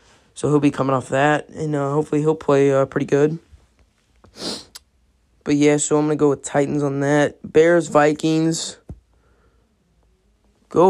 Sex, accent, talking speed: male, American, 155 wpm